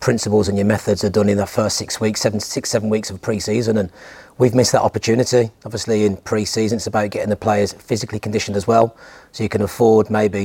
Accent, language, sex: British, English, male